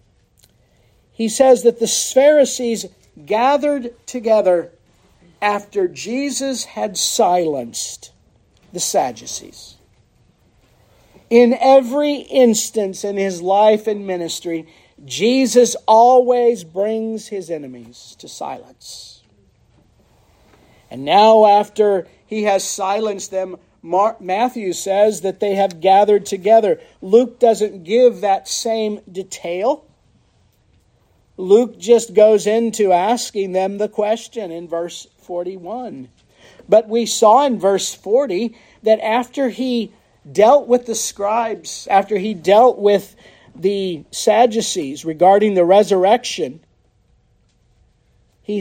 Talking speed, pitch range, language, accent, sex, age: 100 wpm, 185-230 Hz, English, American, male, 50-69